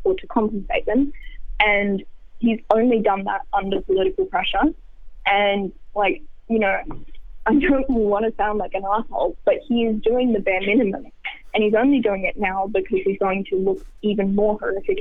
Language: English